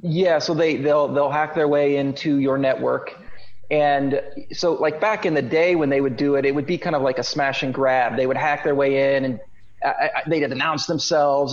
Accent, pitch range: American, 135-160 Hz